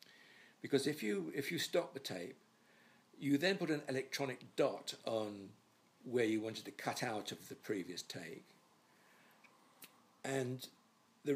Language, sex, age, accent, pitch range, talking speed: English, male, 60-79, British, 110-175 Hz, 145 wpm